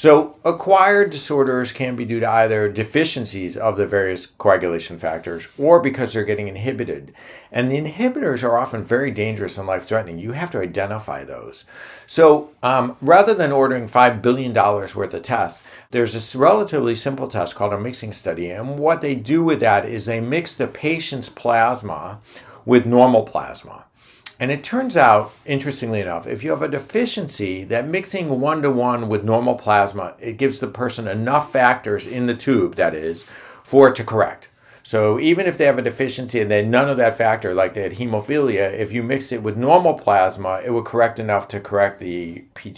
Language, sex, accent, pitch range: English, male, American, 105-140 Hz